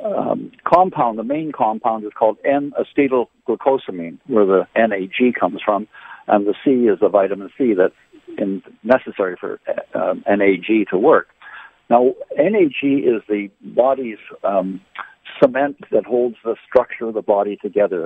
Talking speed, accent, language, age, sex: 150 wpm, American, English, 60-79, male